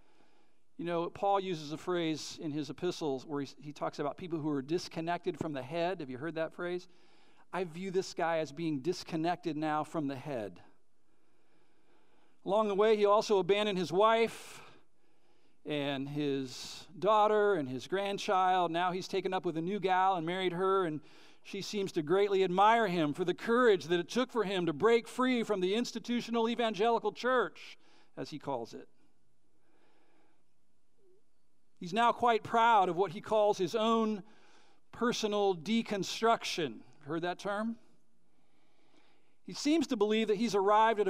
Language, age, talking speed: English, 50-69, 165 wpm